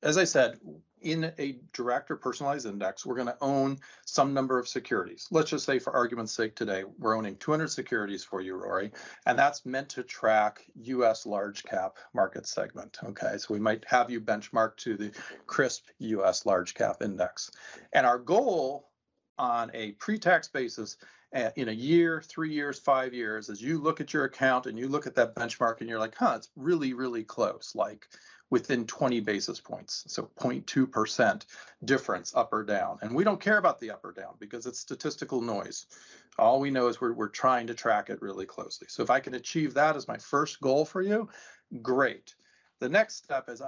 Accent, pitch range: American, 110-145 Hz